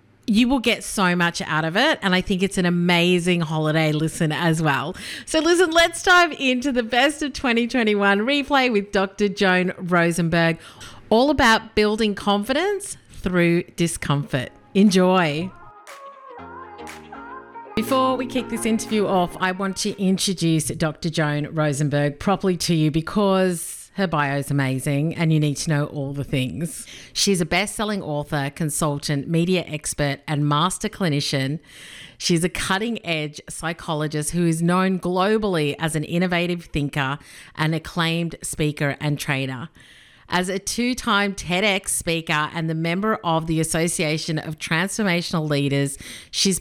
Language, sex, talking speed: English, female, 140 wpm